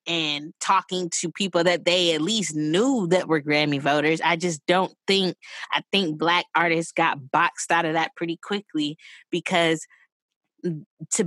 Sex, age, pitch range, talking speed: female, 20-39, 165-205 Hz, 160 wpm